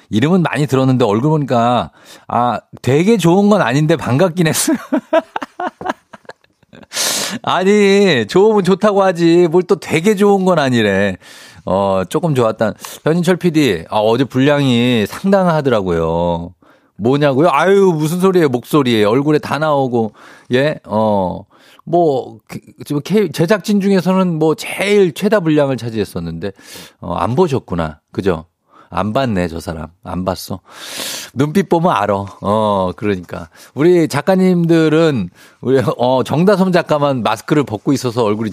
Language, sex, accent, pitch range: Korean, male, native, 105-170 Hz